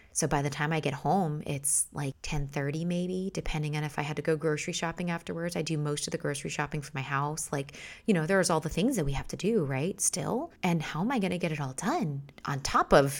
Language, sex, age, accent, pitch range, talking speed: English, female, 20-39, American, 145-175 Hz, 260 wpm